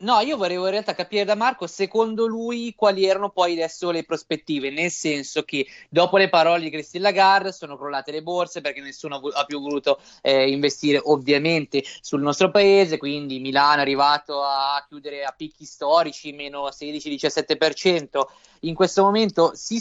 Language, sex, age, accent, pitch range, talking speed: Italian, male, 20-39, native, 150-190 Hz, 165 wpm